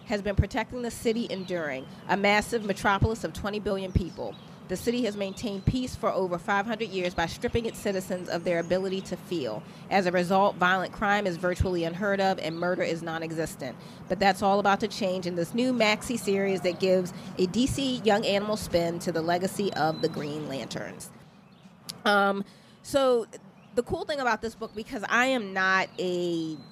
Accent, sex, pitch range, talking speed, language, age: American, female, 175-205 Hz, 185 wpm, English, 30-49